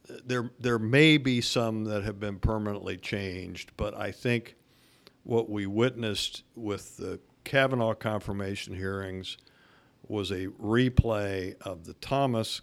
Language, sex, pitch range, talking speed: English, male, 95-120 Hz, 130 wpm